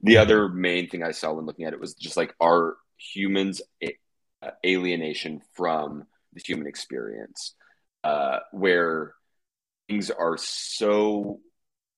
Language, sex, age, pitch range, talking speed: English, male, 30-49, 80-100 Hz, 135 wpm